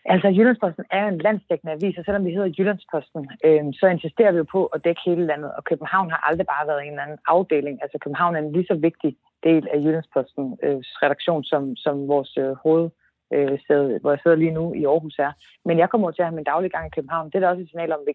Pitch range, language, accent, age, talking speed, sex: 150-180 Hz, Danish, native, 30-49, 250 wpm, female